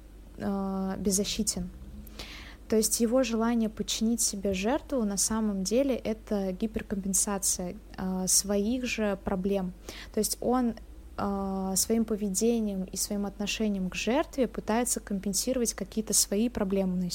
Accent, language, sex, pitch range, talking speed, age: native, Russian, female, 190-230 Hz, 110 wpm, 20-39